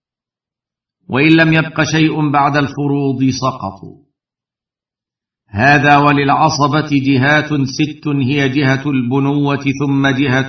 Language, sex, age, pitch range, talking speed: Arabic, male, 50-69, 130-155 Hz, 90 wpm